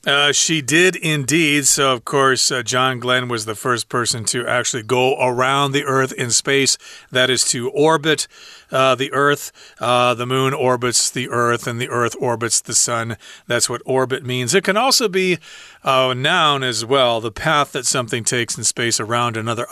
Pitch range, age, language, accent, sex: 120-155 Hz, 40-59, Chinese, American, male